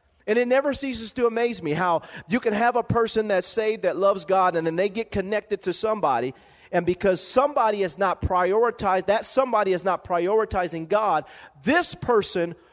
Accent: American